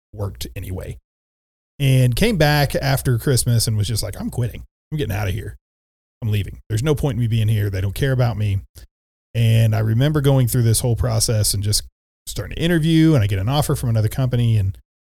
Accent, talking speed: American, 215 wpm